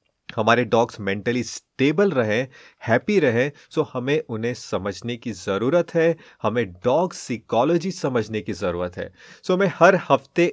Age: 30-49